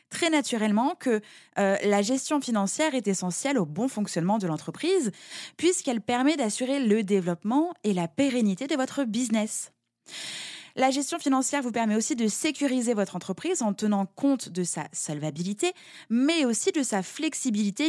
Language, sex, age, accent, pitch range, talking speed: French, female, 20-39, French, 190-265 Hz, 155 wpm